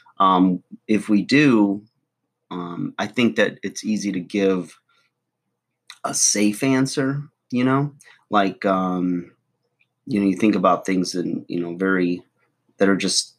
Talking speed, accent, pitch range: 145 wpm, American, 90-105 Hz